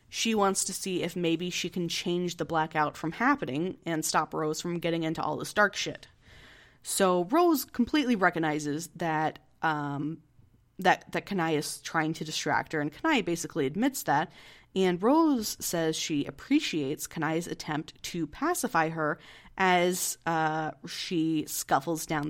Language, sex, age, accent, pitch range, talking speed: English, female, 30-49, American, 155-190 Hz, 155 wpm